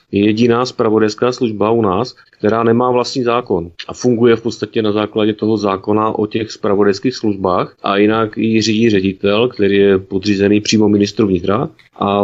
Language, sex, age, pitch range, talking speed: Czech, male, 30-49, 100-125 Hz, 160 wpm